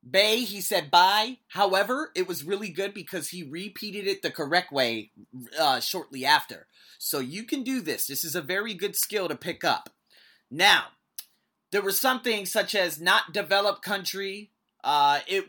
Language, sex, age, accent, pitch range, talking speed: English, male, 30-49, American, 150-200 Hz, 170 wpm